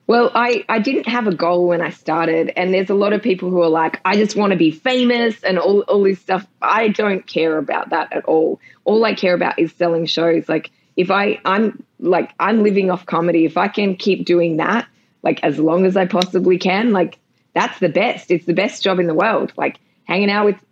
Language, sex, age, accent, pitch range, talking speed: English, female, 20-39, Australian, 175-210 Hz, 235 wpm